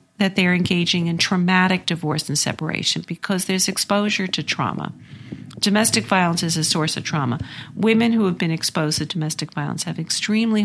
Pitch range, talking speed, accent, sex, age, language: 160-200 Hz, 170 wpm, American, female, 50-69, English